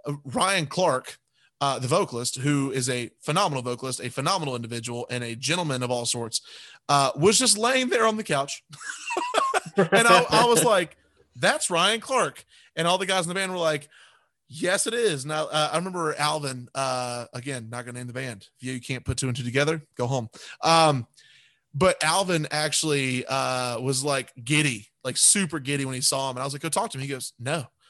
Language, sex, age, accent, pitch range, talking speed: English, male, 20-39, American, 130-155 Hz, 205 wpm